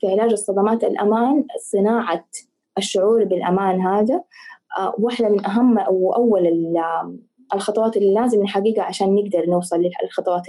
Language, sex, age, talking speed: Arabic, female, 20-39, 115 wpm